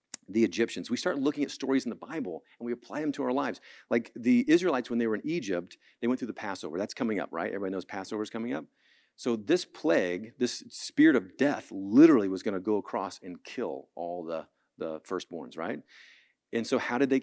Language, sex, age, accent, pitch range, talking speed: English, male, 40-59, American, 110-180 Hz, 225 wpm